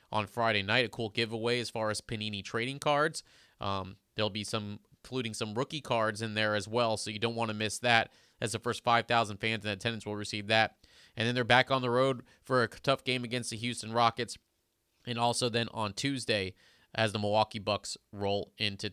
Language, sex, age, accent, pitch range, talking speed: English, male, 30-49, American, 110-130 Hz, 210 wpm